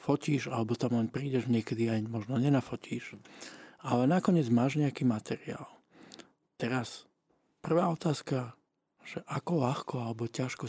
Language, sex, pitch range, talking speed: Slovak, male, 115-140 Hz, 125 wpm